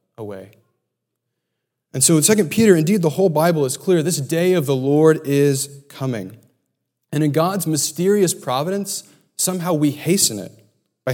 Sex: male